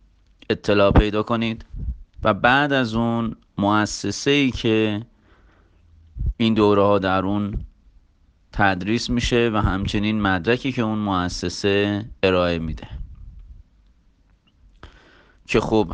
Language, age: Persian, 30-49